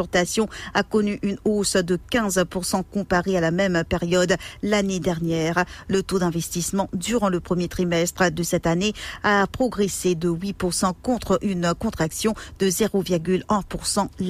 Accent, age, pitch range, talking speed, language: French, 50-69, 175-205 Hz, 135 wpm, English